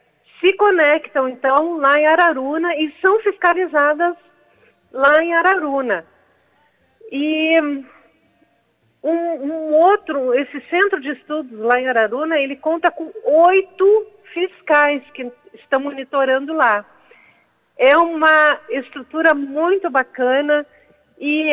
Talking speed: 105 wpm